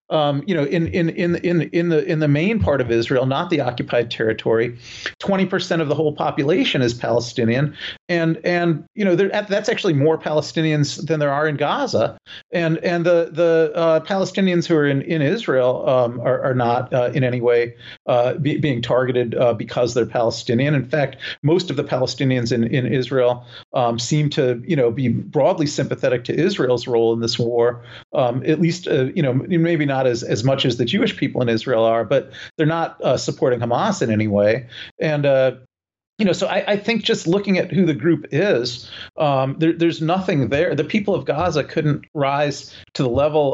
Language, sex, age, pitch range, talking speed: English, male, 40-59, 125-165 Hz, 205 wpm